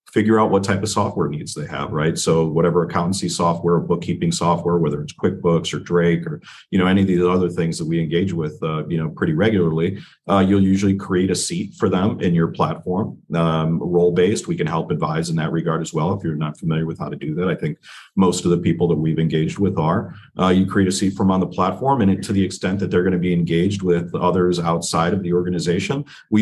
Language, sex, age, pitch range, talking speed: English, male, 40-59, 85-95 Hz, 240 wpm